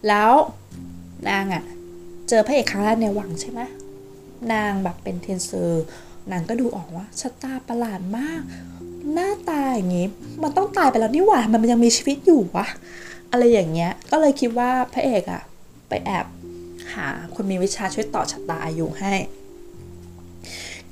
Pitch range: 170-235 Hz